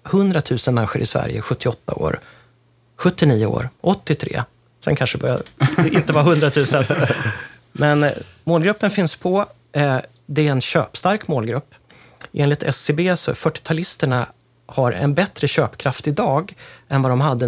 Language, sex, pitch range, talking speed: Swedish, male, 120-155 Hz, 135 wpm